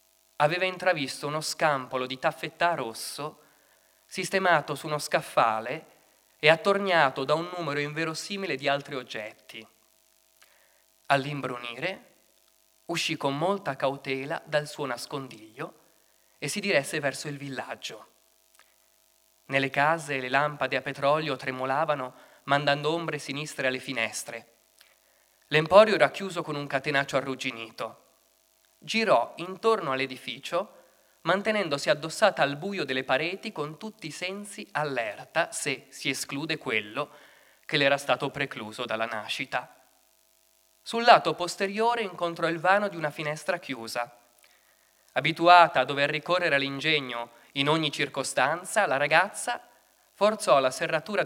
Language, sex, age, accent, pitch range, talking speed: Italian, male, 20-39, native, 130-170 Hz, 120 wpm